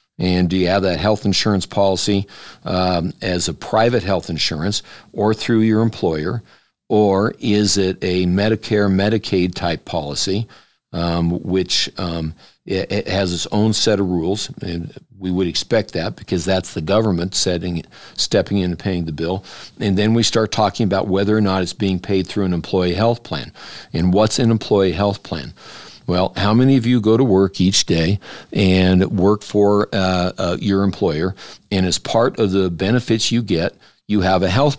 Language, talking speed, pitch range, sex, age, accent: English, 175 wpm, 90-105 Hz, male, 60-79, American